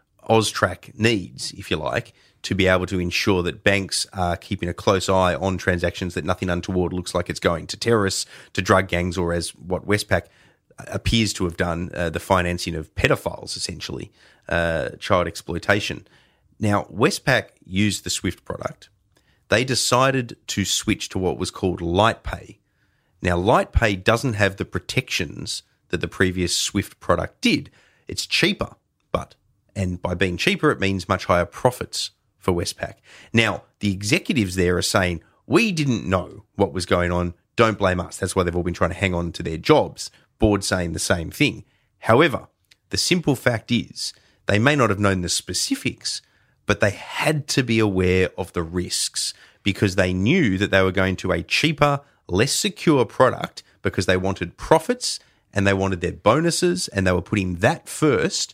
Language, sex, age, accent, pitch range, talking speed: English, male, 30-49, Australian, 90-110 Hz, 175 wpm